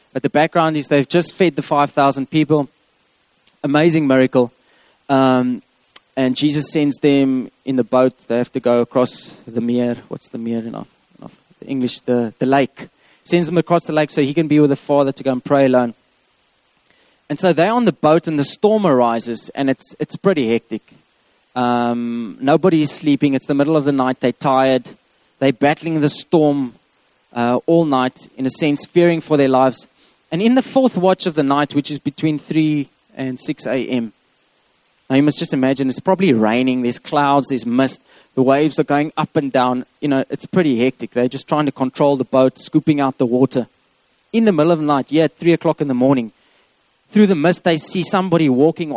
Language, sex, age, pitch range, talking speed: English, male, 20-39, 130-165 Hz, 200 wpm